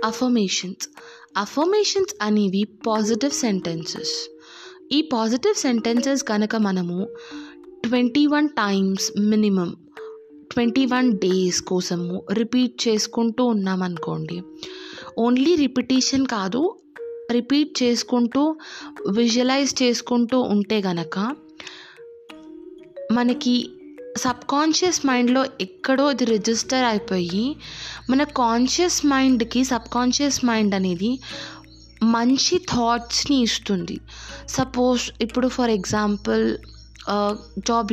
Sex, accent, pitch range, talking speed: female, native, 205-260 Hz, 80 wpm